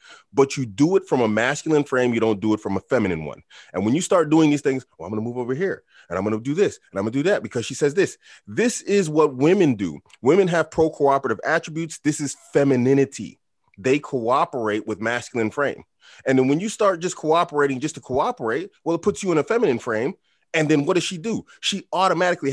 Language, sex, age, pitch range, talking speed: English, male, 30-49, 120-180 Hz, 240 wpm